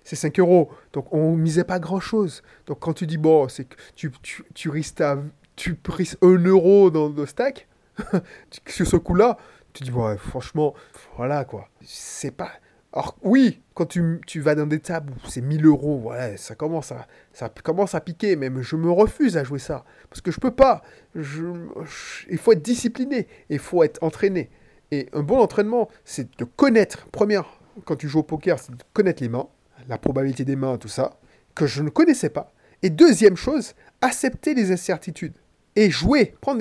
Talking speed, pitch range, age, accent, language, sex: 190 wpm, 150-205 Hz, 20-39, French, French, male